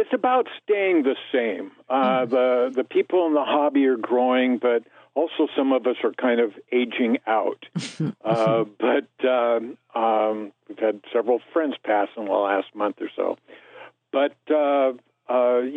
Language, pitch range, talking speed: English, 120-145 Hz, 160 wpm